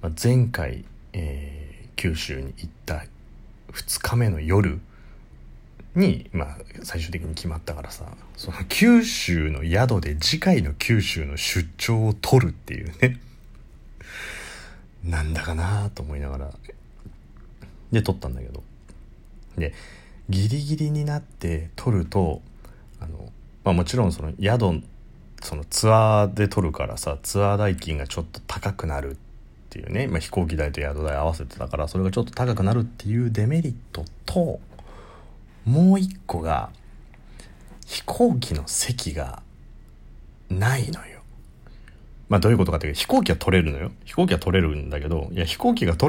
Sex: male